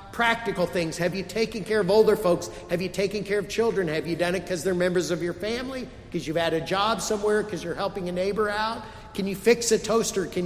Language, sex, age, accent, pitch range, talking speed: English, male, 50-69, American, 165-215 Hz, 245 wpm